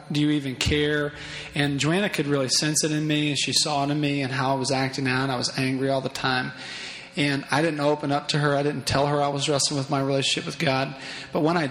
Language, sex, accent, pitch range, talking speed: English, male, American, 140-165 Hz, 270 wpm